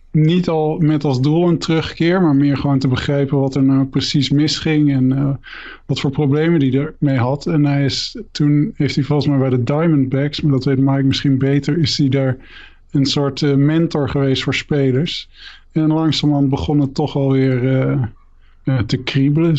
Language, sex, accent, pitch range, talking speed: Dutch, male, Dutch, 135-150 Hz, 190 wpm